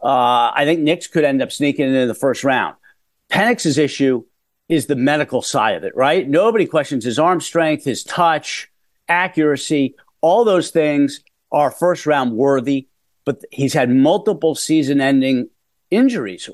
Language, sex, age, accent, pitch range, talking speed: English, male, 50-69, American, 140-180 Hz, 155 wpm